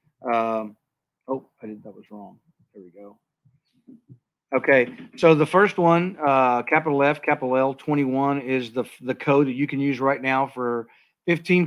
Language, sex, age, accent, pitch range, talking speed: English, male, 40-59, American, 125-155 Hz, 175 wpm